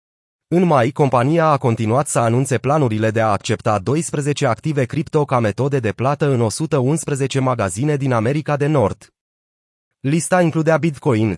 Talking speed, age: 150 wpm, 30-49